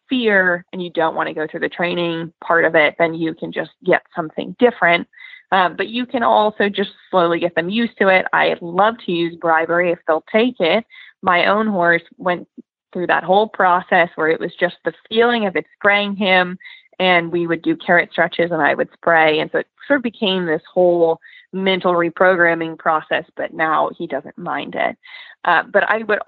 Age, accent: 20-39, American